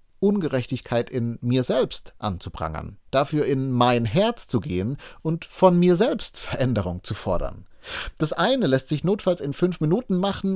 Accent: German